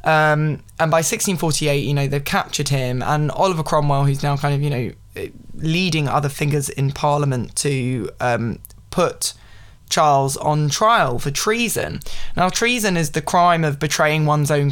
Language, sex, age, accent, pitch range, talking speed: English, male, 20-39, British, 135-155 Hz, 165 wpm